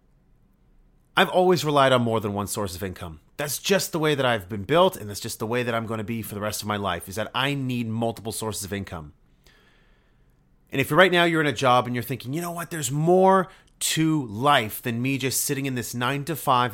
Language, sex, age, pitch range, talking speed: English, male, 30-49, 110-155 Hz, 245 wpm